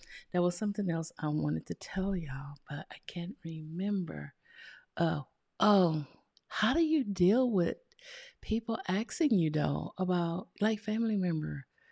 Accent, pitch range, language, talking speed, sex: American, 160-215 Hz, English, 140 wpm, female